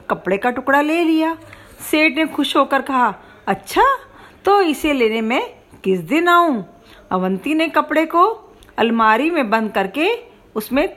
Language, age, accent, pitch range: Hindi, 50-69, native, 225-330 Hz